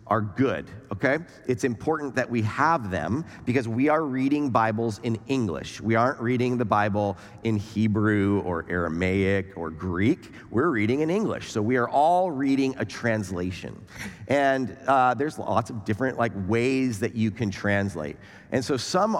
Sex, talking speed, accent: male, 165 wpm, American